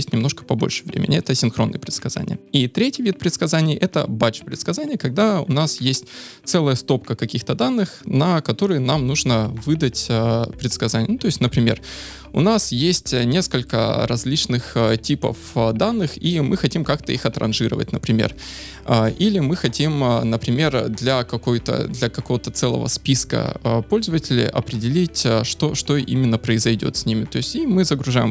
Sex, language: male, Russian